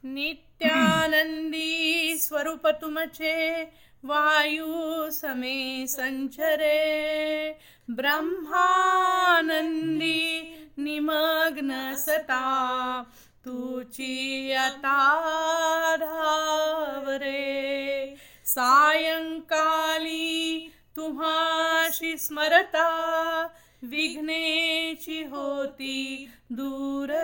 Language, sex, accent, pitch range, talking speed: Marathi, female, native, 270-320 Hz, 35 wpm